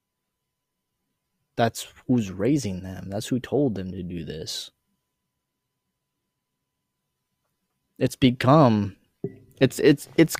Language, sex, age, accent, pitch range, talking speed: English, male, 20-39, American, 115-155 Hz, 90 wpm